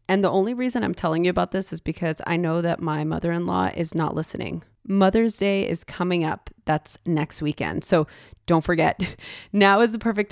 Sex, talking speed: female, 200 wpm